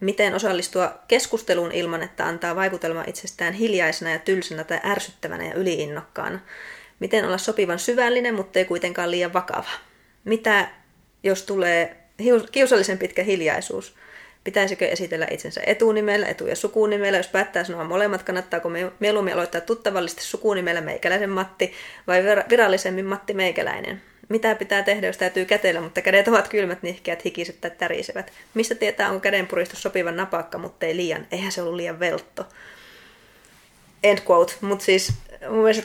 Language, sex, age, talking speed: Finnish, female, 20-39, 145 wpm